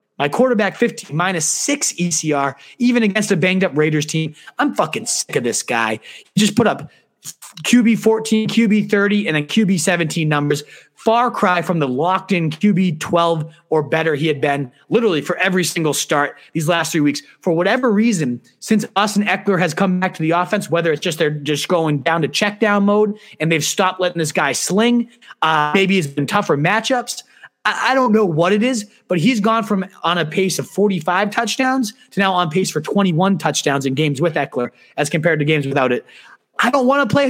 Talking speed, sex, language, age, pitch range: 205 wpm, male, English, 30-49, 160-215 Hz